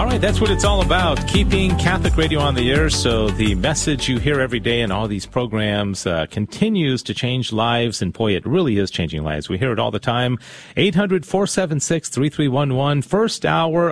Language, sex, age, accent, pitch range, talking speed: English, male, 40-59, American, 110-155 Hz, 195 wpm